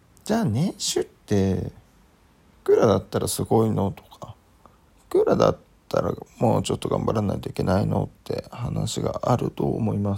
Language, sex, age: Japanese, male, 40-59